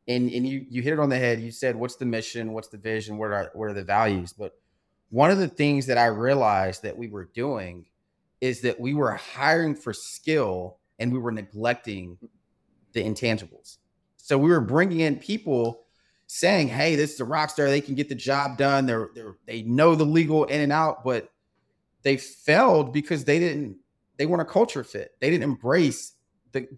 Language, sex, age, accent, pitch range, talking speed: English, male, 30-49, American, 120-180 Hz, 205 wpm